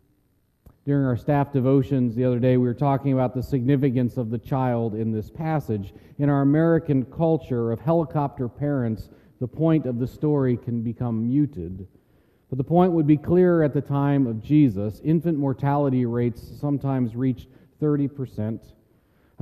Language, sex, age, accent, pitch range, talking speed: English, male, 40-59, American, 115-145 Hz, 160 wpm